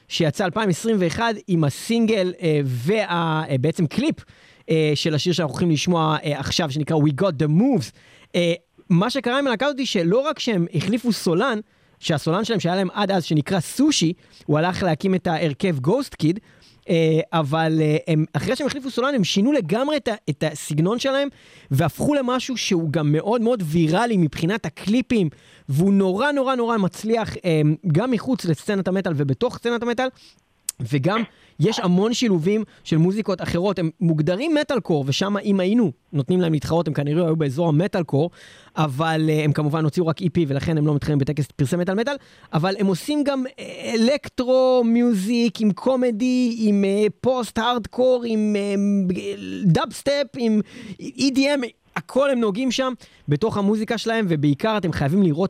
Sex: male